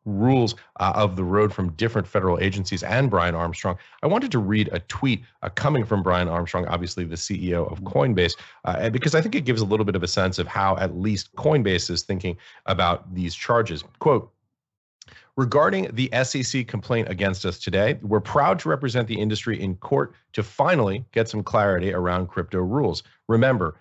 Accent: American